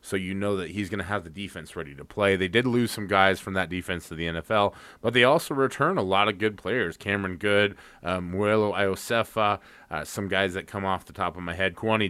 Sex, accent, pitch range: male, American, 95-110 Hz